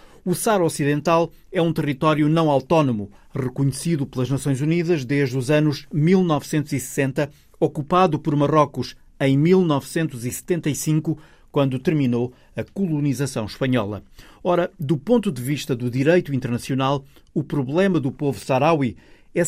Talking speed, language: 125 wpm, Portuguese